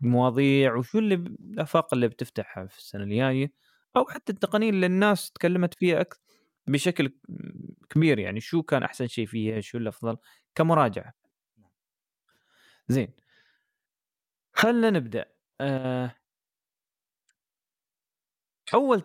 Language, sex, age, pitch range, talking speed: Arabic, male, 20-39, 130-190 Hz, 100 wpm